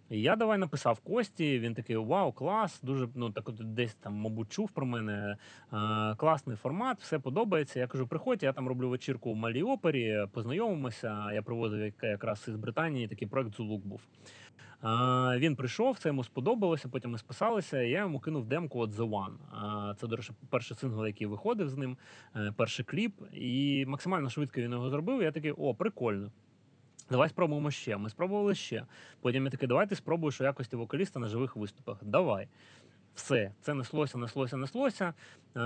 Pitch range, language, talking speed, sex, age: 115-155 Hz, Ukrainian, 170 wpm, male, 30-49